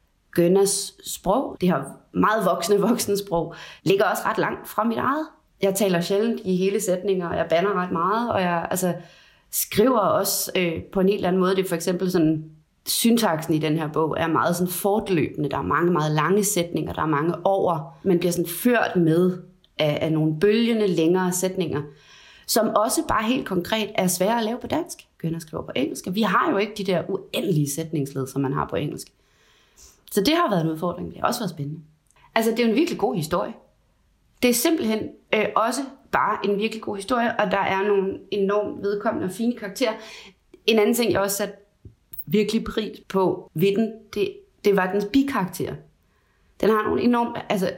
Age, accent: 30-49, native